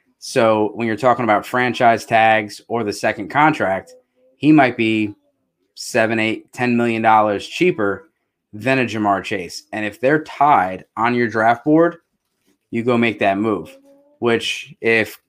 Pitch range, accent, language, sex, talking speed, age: 105-130 Hz, American, English, male, 155 wpm, 20-39